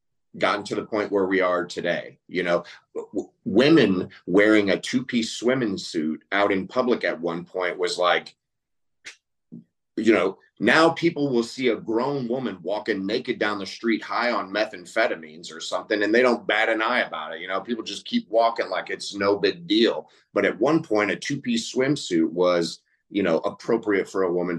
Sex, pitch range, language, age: male, 85-105 Hz, English, 30-49